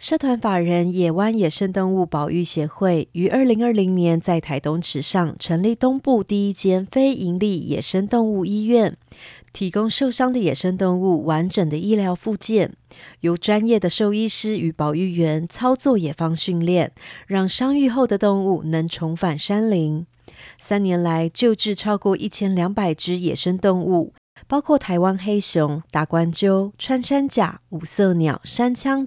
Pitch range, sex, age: 165-220 Hz, female, 30-49